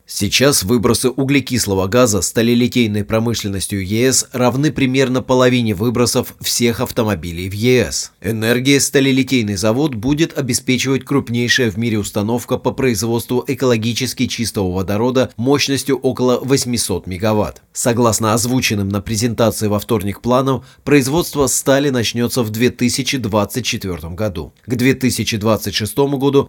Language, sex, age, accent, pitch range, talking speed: Russian, male, 30-49, native, 110-130 Hz, 110 wpm